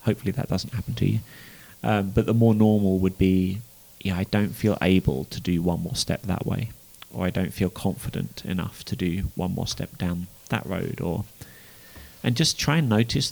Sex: male